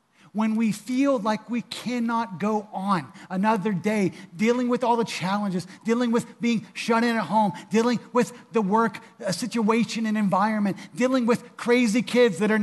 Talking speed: 165 wpm